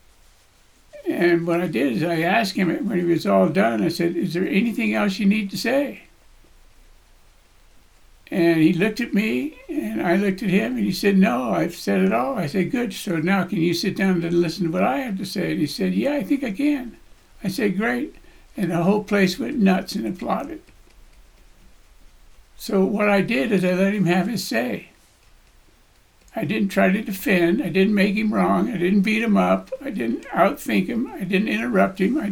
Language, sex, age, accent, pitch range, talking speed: English, male, 60-79, American, 180-220 Hz, 210 wpm